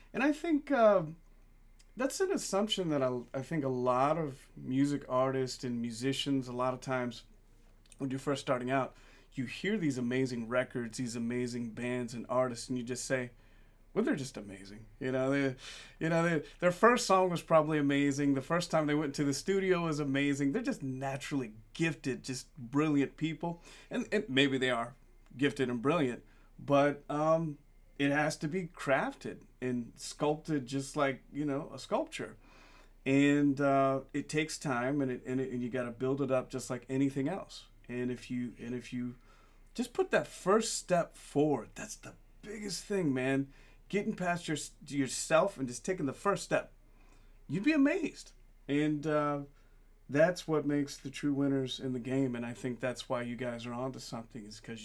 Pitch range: 125-150 Hz